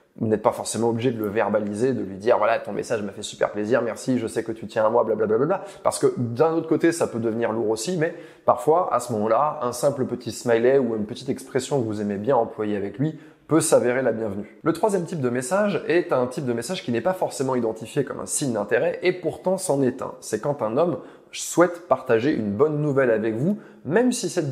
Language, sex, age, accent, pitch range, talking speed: French, male, 20-39, French, 115-165 Hz, 245 wpm